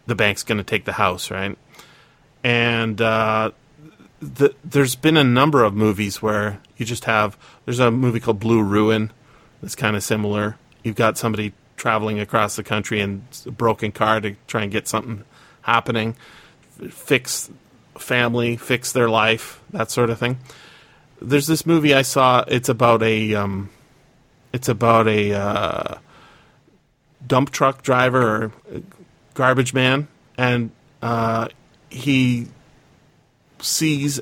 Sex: male